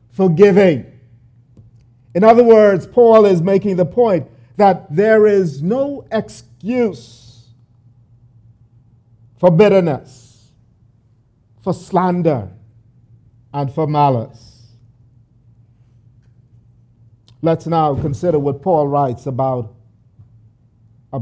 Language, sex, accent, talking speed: English, male, American, 80 wpm